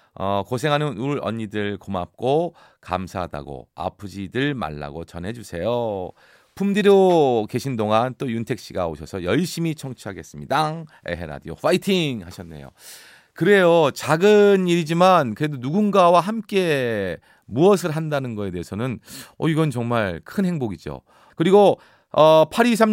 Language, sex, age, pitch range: Korean, male, 40-59, 105-175 Hz